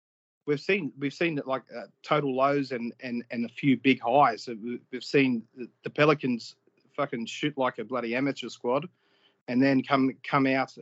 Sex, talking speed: male, 185 wpm